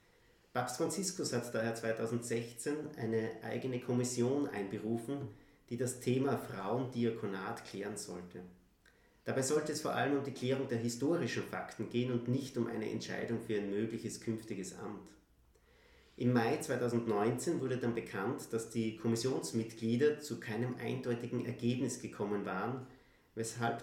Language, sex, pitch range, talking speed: German, male, 110-130 Hz, 135 wpm